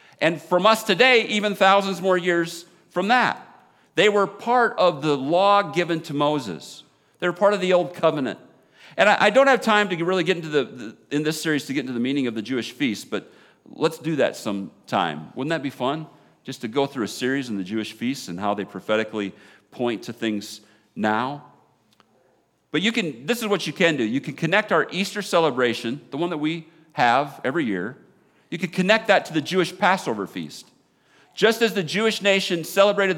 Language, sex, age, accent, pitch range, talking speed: English, male, 40-59, American, 155-210 Hz, 205 wpm